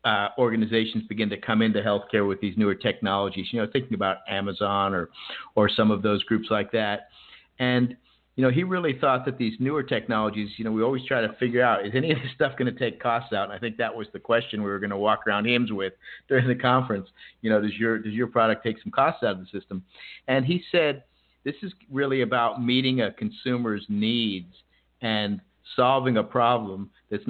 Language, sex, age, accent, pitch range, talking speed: English, male, 50-69, American, 105-125 Hz, 220 wpm